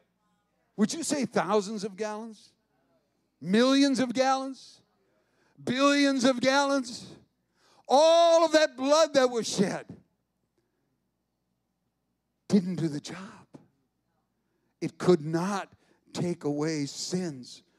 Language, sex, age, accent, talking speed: English, male, 60-79, American, 100 wpm